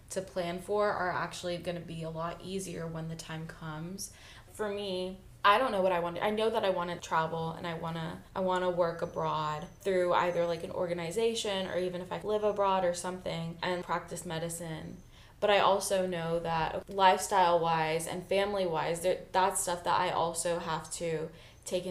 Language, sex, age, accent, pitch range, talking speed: English, female, 10-29, American, 165-190 Hz, 200 wpm